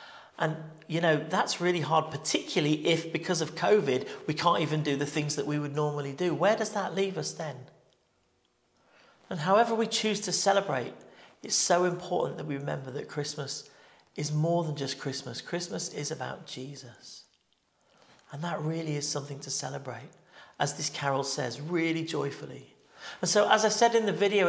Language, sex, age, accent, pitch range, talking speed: English, male, 40-59, British, 150-190 Hz, 175 wpm